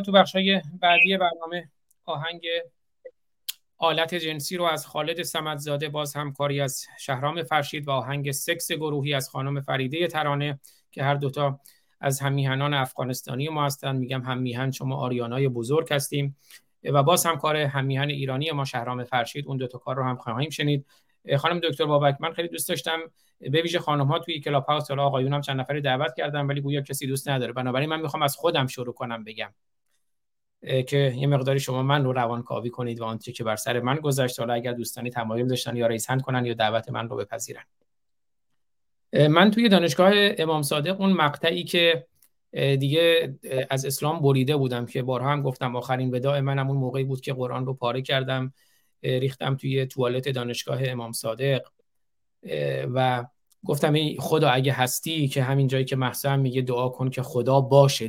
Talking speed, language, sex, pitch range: 170 wpm, Persian, male, 130-155 Hz